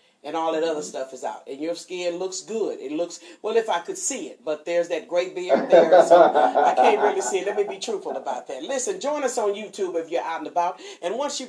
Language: English